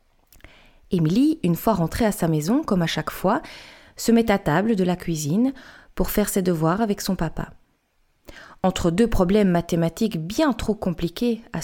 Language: French